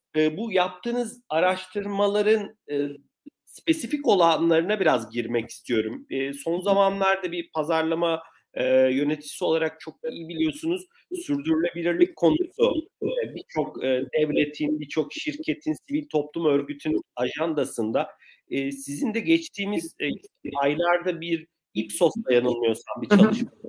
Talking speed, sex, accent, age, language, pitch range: 90 wpm, male, native, 50-69, Turkish, 145-220 Hz